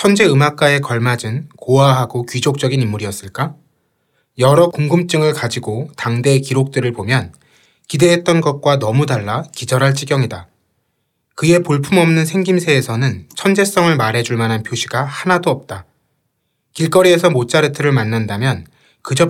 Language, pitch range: Korean, 130-175 Hz